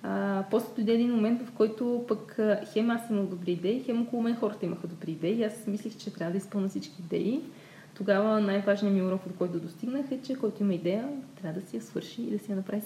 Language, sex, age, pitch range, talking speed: Bulgarian, female, 20-39, 175-220 Hz, 235 wpm